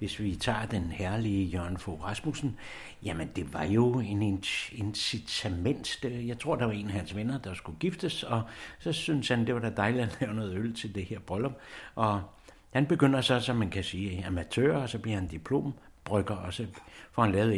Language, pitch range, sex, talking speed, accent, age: English, 90-115 Hz, male, 205 wpm, Danish, 60-79